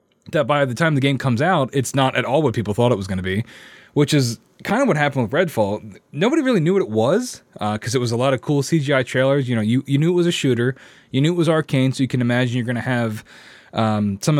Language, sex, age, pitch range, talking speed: English, male, 20-39, 115-160 Hz, 275 wpm